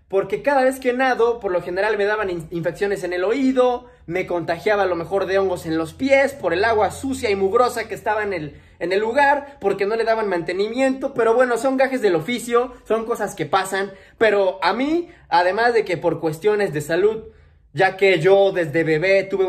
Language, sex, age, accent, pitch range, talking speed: English, male, 20-39, Mexican, 170-230 Hz, 205 wpm